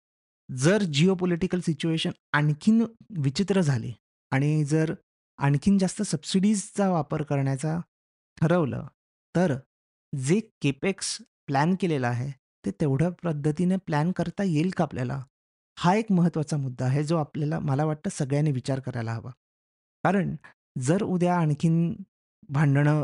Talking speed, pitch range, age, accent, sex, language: 120 wpm, 140-175 Hz, 30-49, native, male, Marathi